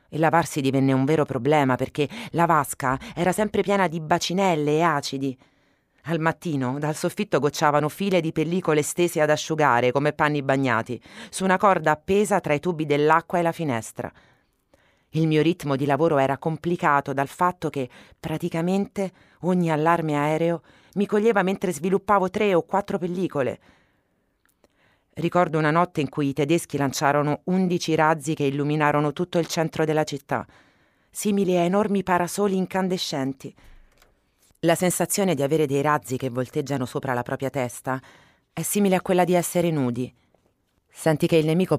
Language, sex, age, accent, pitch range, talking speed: Italian, female, 30-49, native, 140-175 Hz, 155 wpm